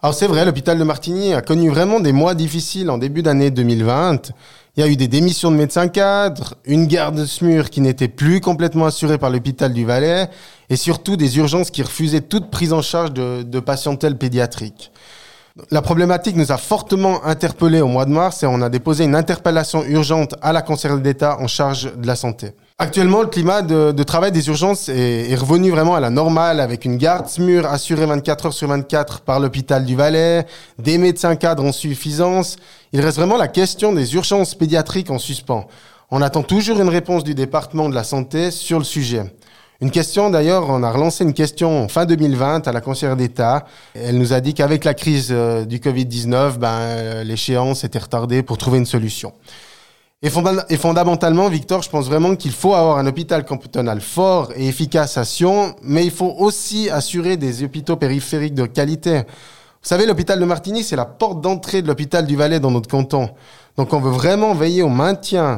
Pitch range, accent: 130-170 Hz, French